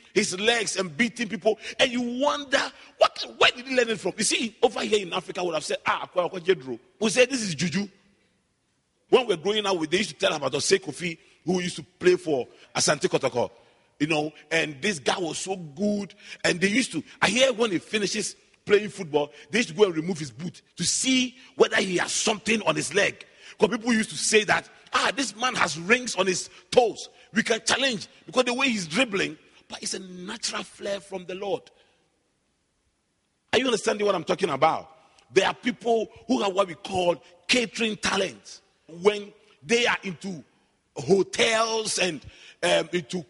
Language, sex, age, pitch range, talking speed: English, male, 40-59, 185-245 Hz, 195 wpm